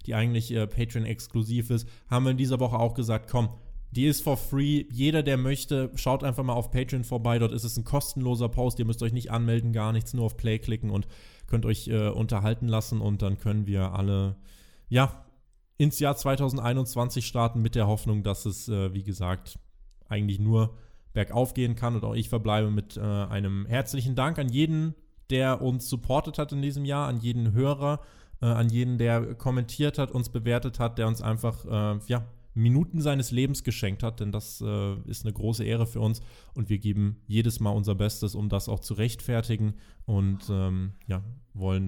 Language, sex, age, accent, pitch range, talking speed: German, male, 20-39, German, 105-130 Hz, 190 wpm